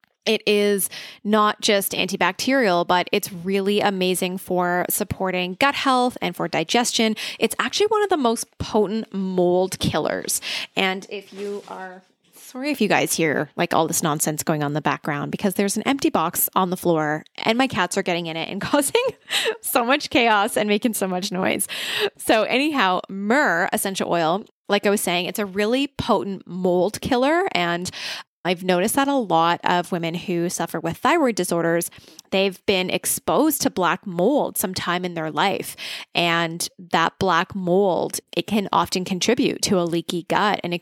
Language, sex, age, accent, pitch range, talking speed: English, female, 20-39, American, 175-220 Hz, 175 wpm